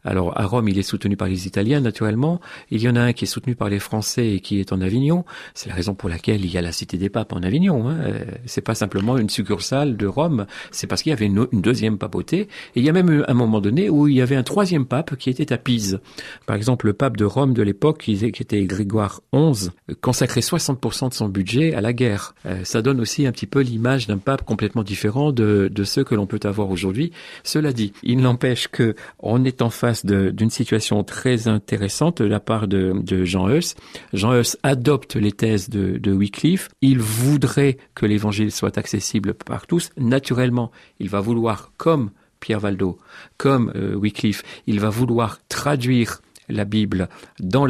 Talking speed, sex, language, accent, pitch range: 210 wpm, male, French, French, 100-135 Hz